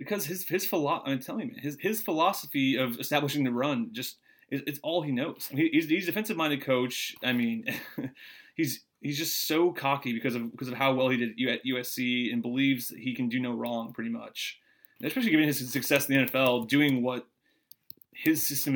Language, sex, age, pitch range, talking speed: English, male, 30-49, 125-160 Hz, 210 wpm